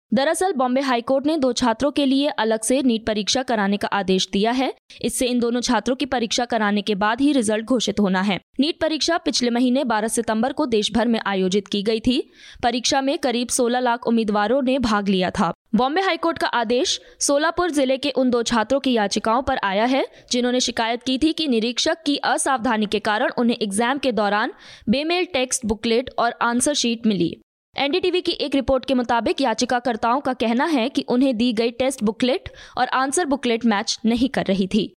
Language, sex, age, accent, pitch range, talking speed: Hindi, female, 20-39, native, 225-280 Hz, 195 wpm